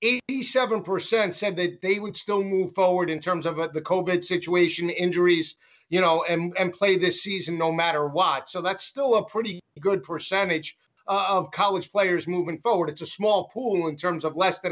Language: English